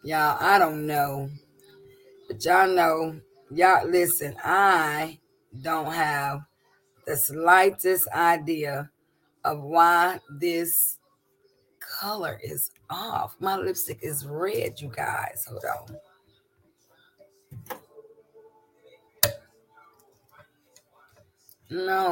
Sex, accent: female, American